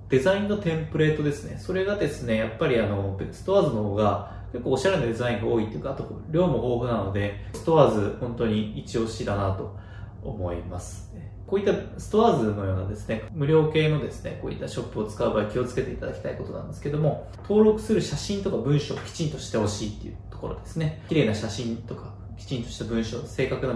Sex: male